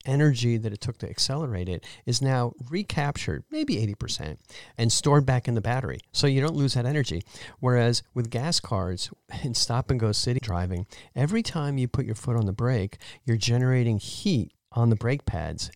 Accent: American